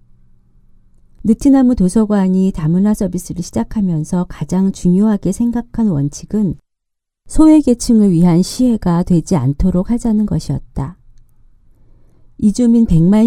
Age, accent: 40-59, native